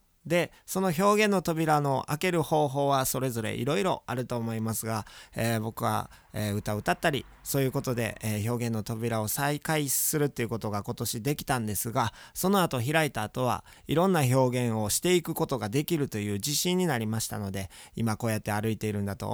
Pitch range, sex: 115-155 Hz, male